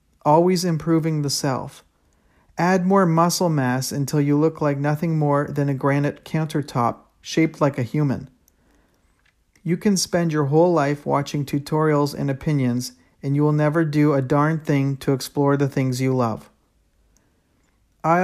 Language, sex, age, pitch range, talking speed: English, male, 50-69, 130-155 Hz, 155 wpm